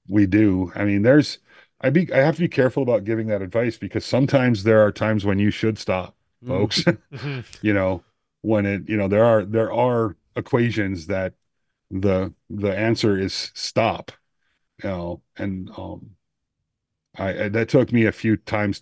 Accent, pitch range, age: American, 90-115 Hz, 40-59